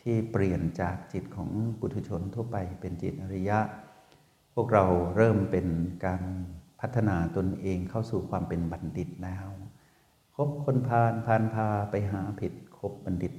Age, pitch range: 60-79, 90-110 Hz